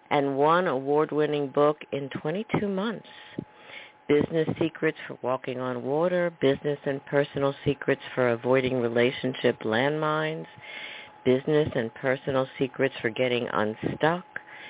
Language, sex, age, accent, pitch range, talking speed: English, female, 50-69, American, 130-165 Hz, 115 wpm